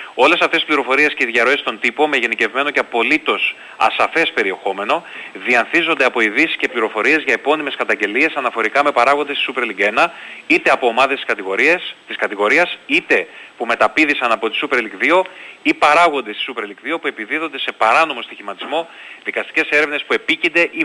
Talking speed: 175 wpm